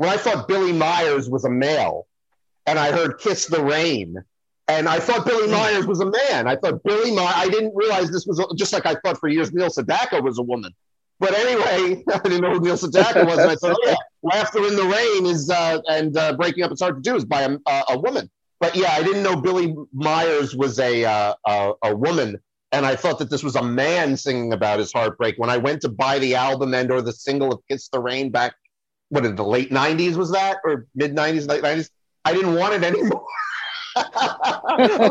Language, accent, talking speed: English, American, 230 wpm